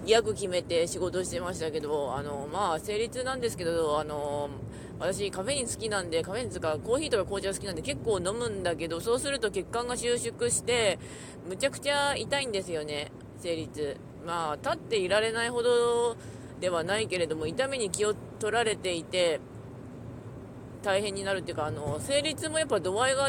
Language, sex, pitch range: Japanese, female, 155-235 Hz